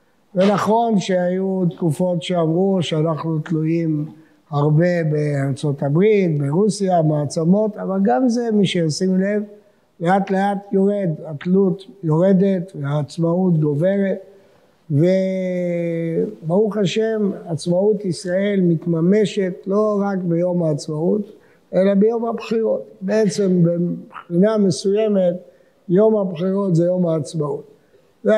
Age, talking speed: 60-79, 95 wpm